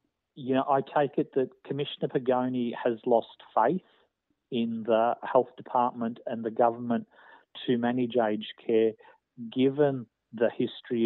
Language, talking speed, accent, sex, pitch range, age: English, 135 wpm, Australian, male, 115-130 Hz, 50-69